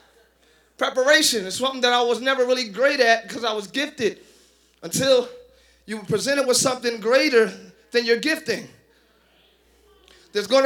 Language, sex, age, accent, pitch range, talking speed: English, male, 30-49, American, 235-365 Hz, 145 wpm